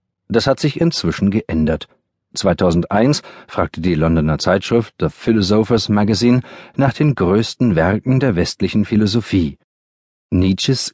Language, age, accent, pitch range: German, 40-59, German, 90-115 Hz